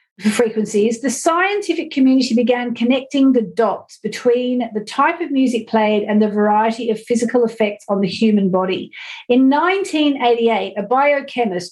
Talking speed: 145 wpm